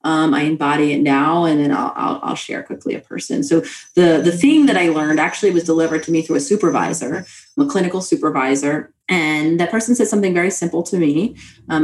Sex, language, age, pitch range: female, English, 30-49, 155-190 Hz